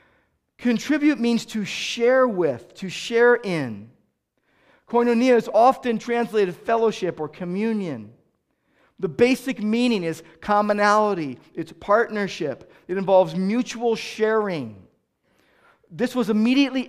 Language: English